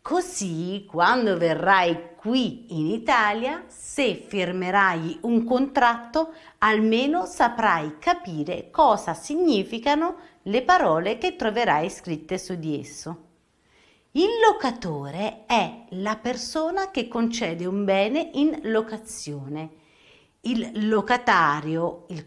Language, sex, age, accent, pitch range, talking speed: English, female, 40-59, Italian, 170-255 Hz, 100 wpm